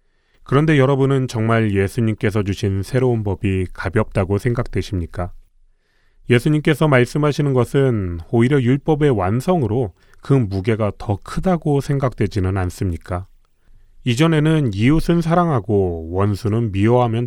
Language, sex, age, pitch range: Korean, male, 30-49, 95-130 Hz